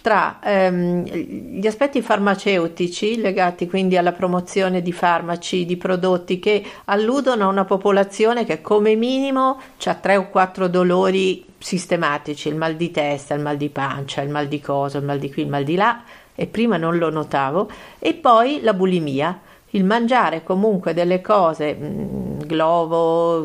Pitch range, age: 170-210 Hz, 50-69